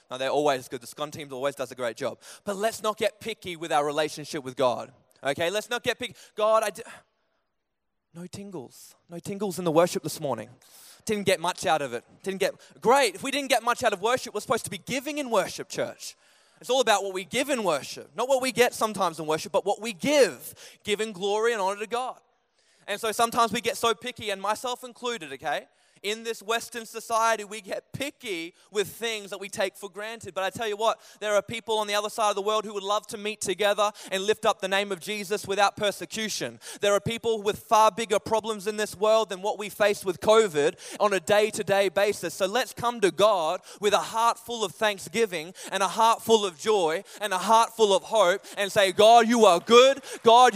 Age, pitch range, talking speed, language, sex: 20-39, 195-230 Hz, 230 wpm, English, male